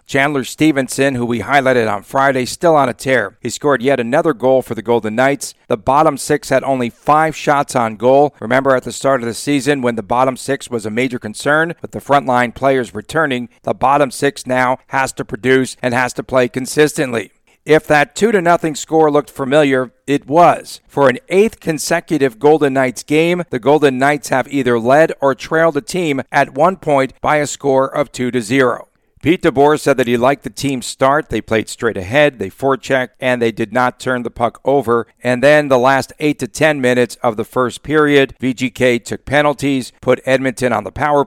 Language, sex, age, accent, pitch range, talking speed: English, male, 50-69, American, 125-145 Hz, 205 wpm